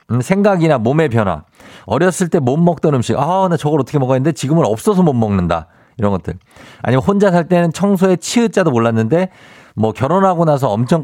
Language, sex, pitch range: Korean, male, 110-165 Hz